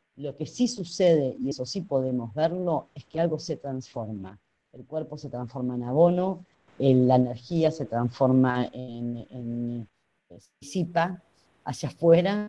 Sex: female